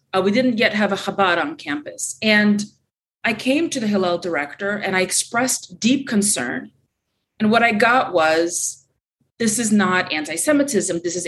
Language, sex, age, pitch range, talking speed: English, female, 30-49, 170-225 Hz, 170 wpm